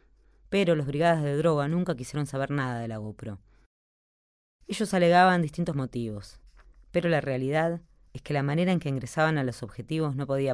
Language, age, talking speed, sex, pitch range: Spanish, 20-39, 175 wpm, female, 120-165 Hz